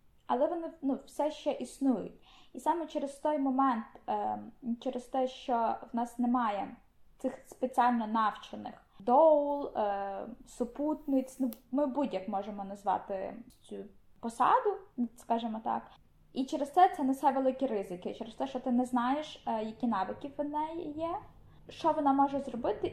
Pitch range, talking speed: 235-290 Hz, 145 wpm